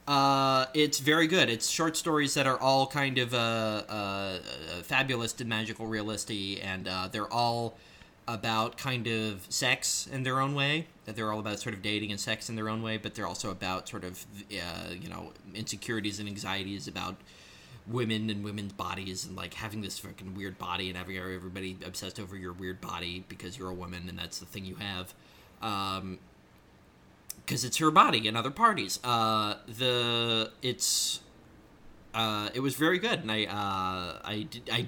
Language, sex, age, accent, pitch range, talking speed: English, male, 30-49, American, 100-125 Hz, 185 wpm